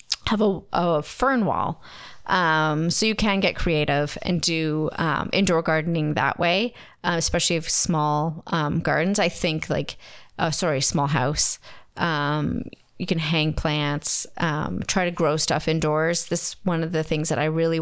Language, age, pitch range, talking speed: English, 30-49, 155-190 Hz, 170 wpm